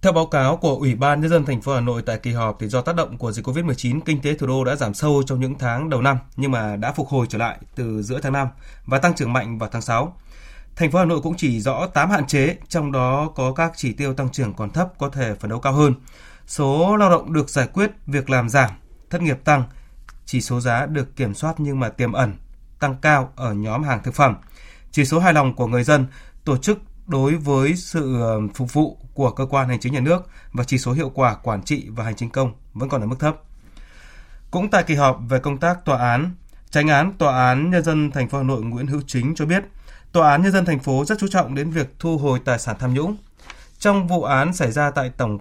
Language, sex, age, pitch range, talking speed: Vietnamese, male, 20-39, 125-155 Hz, 255 wpm